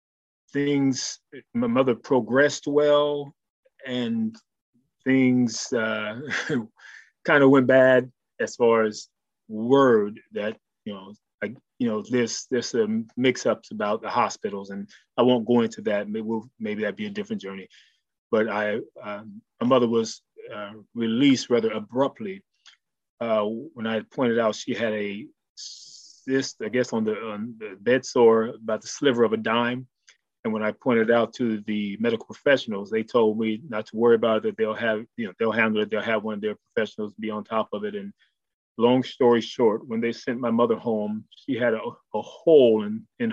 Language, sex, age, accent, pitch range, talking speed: English, male, 30-49, American, 110-130 Hz, 180 wpm